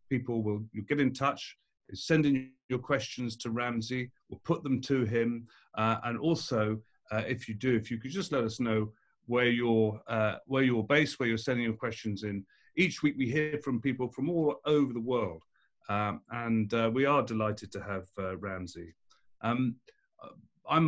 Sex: male